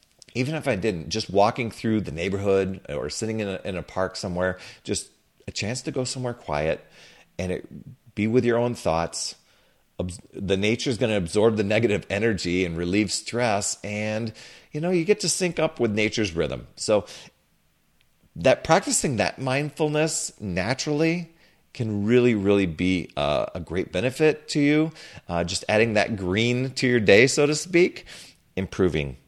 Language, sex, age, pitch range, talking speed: English, male, 40-59, 90-130 Hz, 170 wpm